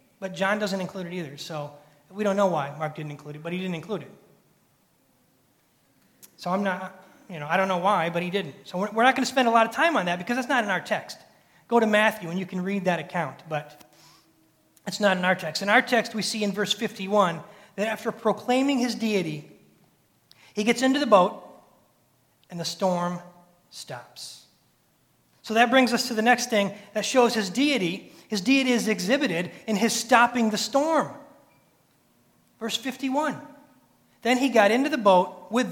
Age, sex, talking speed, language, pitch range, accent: 30-49, male, 195 wpm, English, 165-225 Hz, American